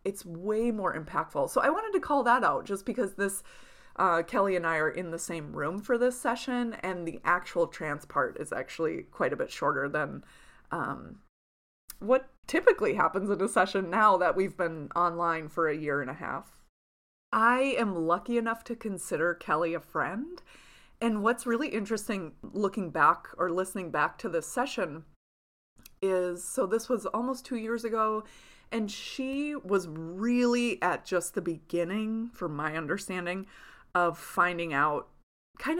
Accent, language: American, English